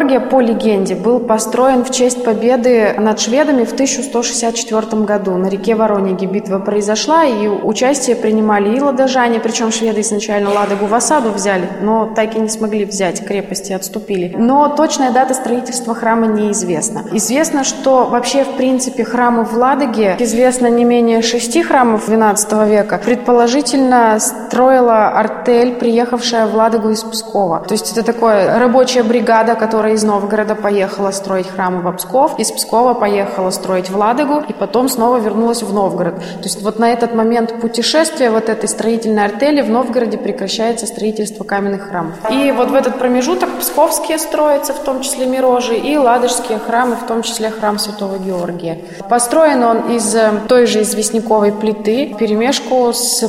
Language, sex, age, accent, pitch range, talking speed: Russian, female, 20-39, native, 210-245 Hz, 155 wpm